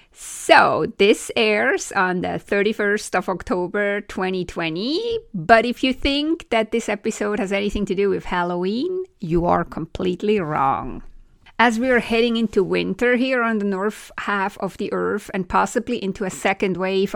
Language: English